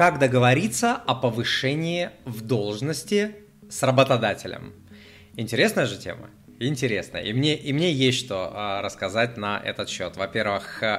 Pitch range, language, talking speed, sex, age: 105-130 Hz, Russian, 120 wpm, male, 20-39